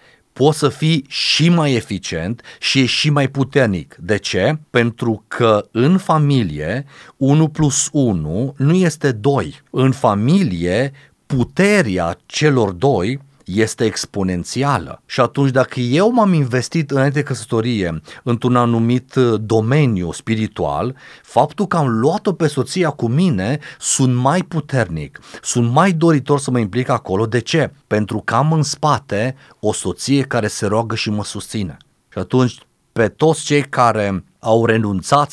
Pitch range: 110-140 Hz